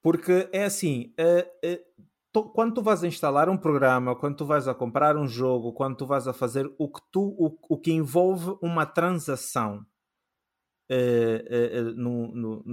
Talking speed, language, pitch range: 135 wpm, Portuguese, 125-175 Hz